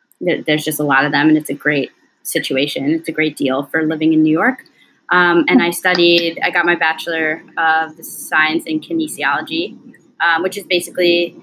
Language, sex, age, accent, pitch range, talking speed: English, female, 20-39, American, 165-220 Hz, 190 wpm